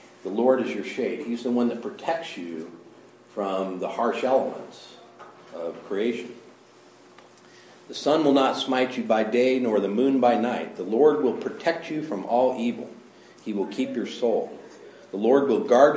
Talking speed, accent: 175 wpm, American